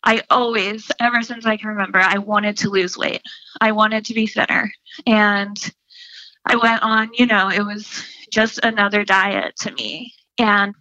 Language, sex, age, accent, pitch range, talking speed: English, female, 20-39, American, 210-265 Hz, 170 wpm